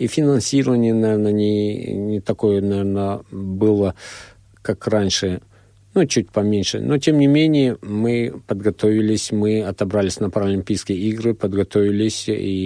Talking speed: 125 wpm